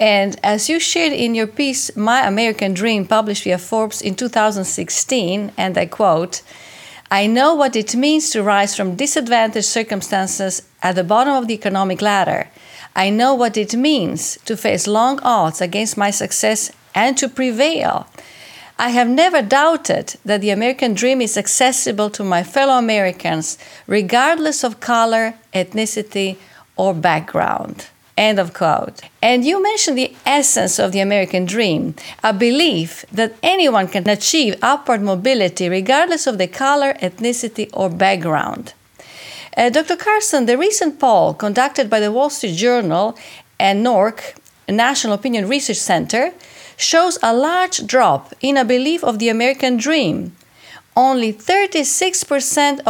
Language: English